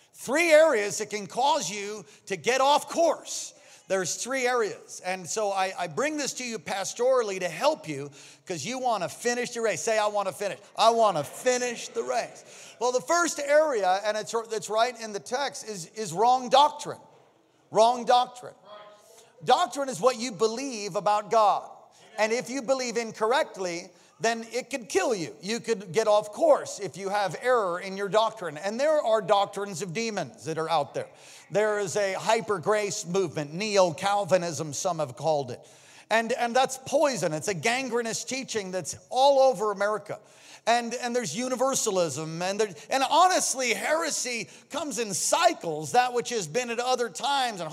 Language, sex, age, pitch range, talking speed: English, male, 40-59, 205-265 Hz, 175 wpm